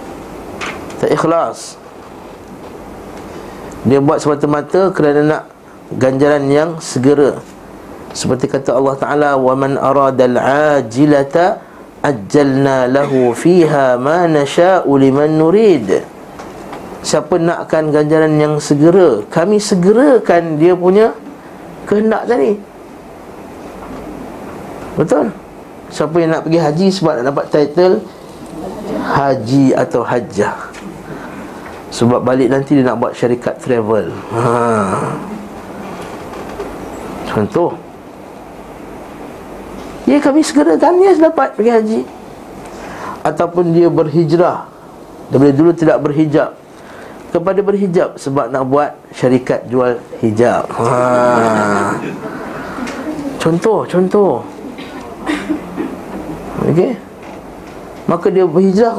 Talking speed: 90 wpm